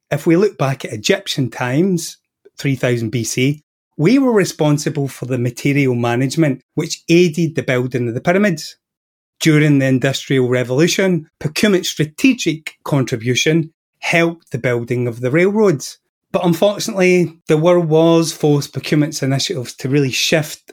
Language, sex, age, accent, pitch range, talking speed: English, male, 30-49, British, 130-175 Hz, 135 wpm